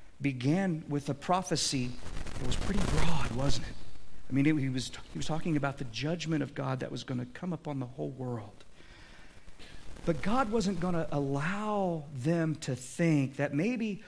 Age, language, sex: 50-69, English, male